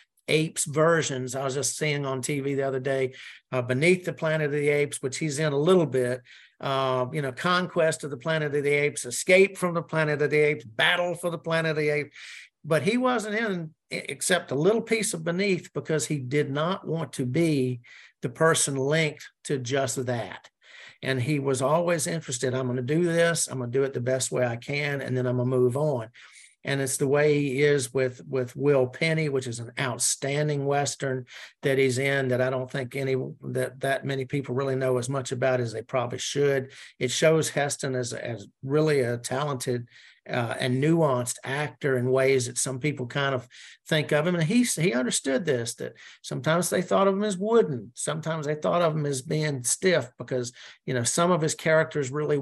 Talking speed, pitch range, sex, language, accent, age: 210 wpm, 130-160 Hz, male, English, American, 50-69